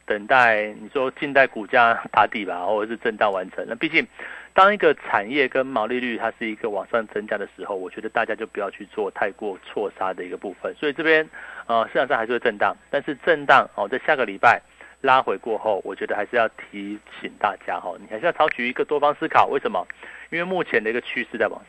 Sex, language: male, Chinese